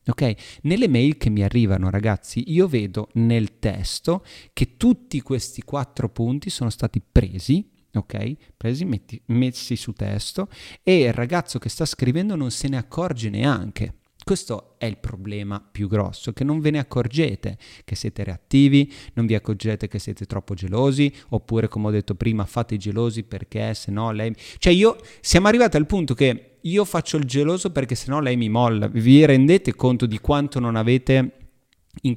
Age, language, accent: 30-49, Italian, native